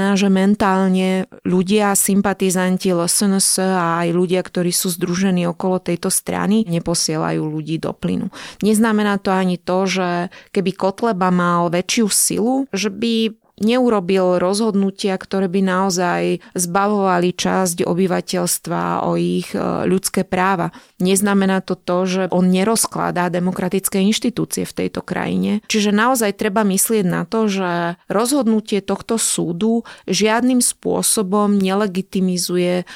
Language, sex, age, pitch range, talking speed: Slovak, female, 30-49, 180-205 Hz, 120 wpm